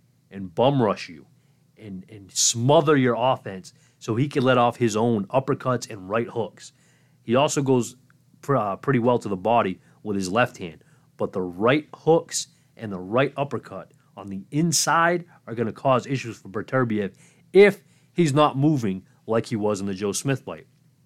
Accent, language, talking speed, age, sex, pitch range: American, English, 180 wpm, 30-49, male, 115-145 Hz